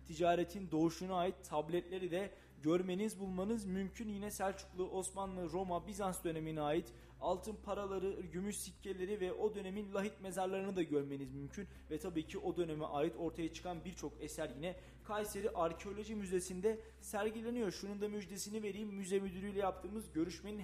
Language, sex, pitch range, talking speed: Turkish, male, 155-195 Hz, 145 wpm